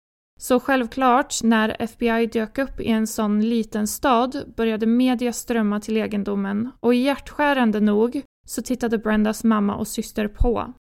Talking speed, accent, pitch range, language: 140 wpm, native, 215-245 Hz, Swedish